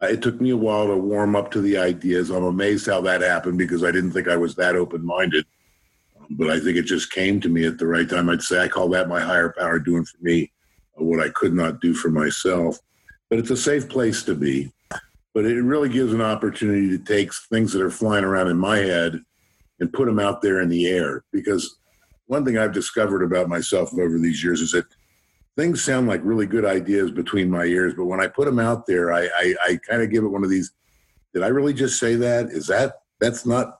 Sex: male